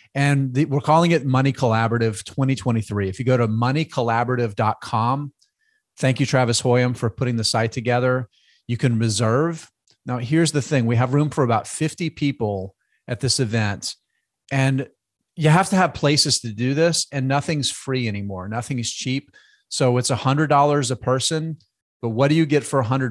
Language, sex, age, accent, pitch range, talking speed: English, male, 40-59, American, 120-140 Hz, 170 wpm